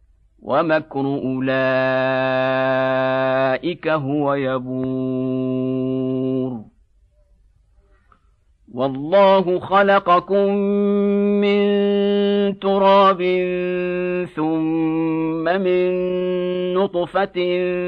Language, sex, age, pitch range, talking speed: Arabic, male, 50-69, 140-180 Hz, 35 wpm